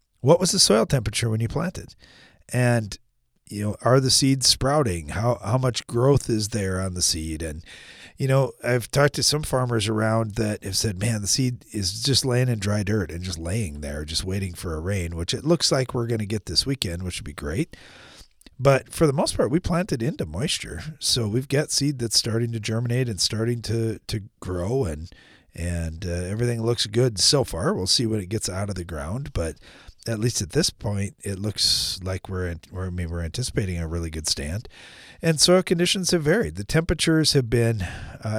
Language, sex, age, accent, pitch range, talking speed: English, male, 40-59, American, 100-135 Hz, 215 wpm